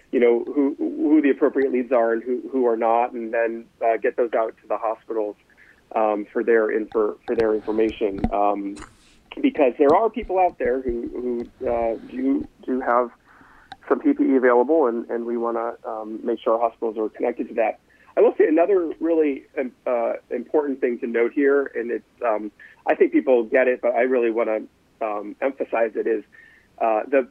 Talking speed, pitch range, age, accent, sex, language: 200 wpm, 110-140 Hz, 40-59, American, male, English